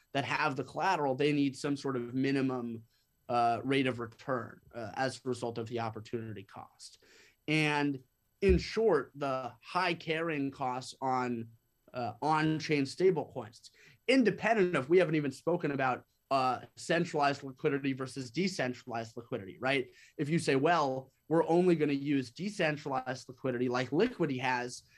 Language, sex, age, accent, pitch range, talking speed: English, male, 30-49, American, 125-150 Hz, 150 wpm